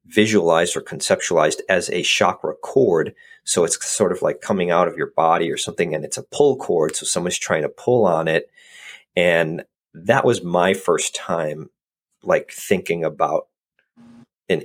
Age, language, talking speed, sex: 40-59, English, 170 wpm, male